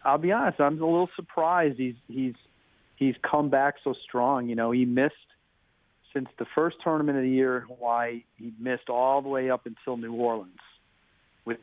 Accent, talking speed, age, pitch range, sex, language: American, 190 wpm, 40-59, 115-130 Hz, male, English